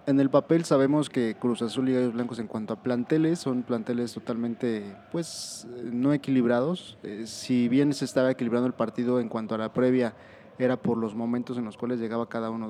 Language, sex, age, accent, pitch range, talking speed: Spanish, male, 20-39, Mexican, 115-135 Hz, 205 wpm